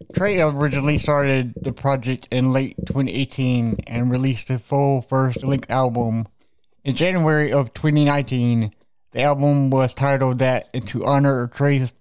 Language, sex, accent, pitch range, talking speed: English, male, American, 125-145 Hz, 135 wpm